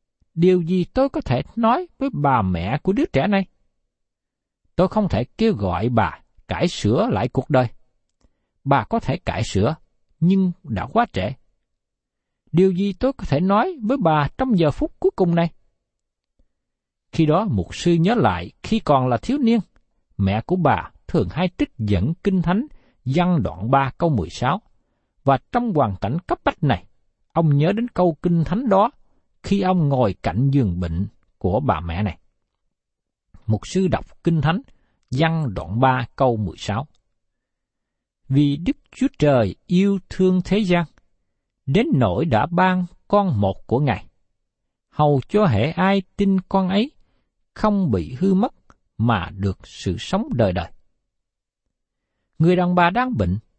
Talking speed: 160 wpm